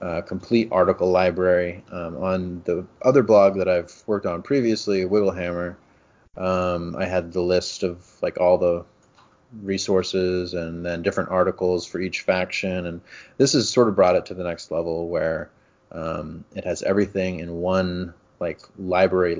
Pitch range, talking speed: 85-95 Hz, 160 wpm